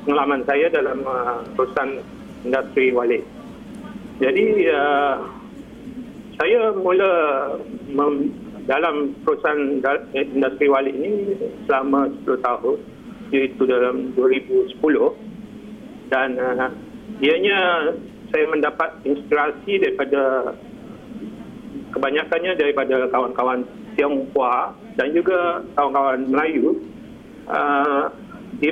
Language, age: Malay, 50-69